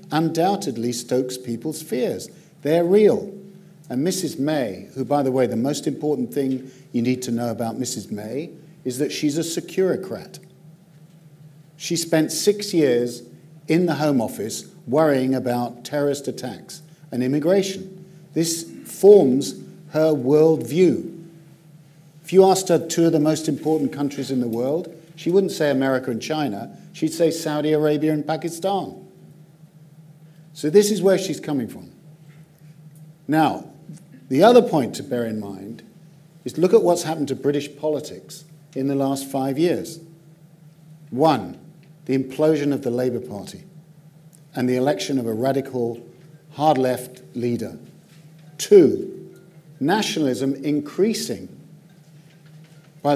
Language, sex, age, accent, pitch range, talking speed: English, male, 50-69, British, 135-165 Hz, 135 wpm